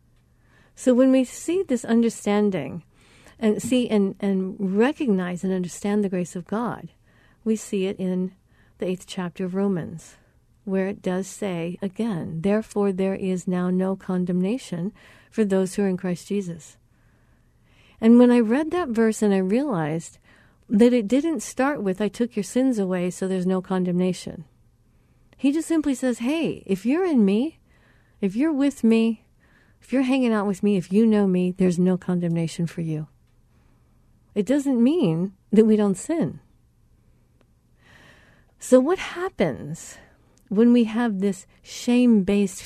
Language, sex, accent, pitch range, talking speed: English, female, American, 180-235 Hz, 155 wpm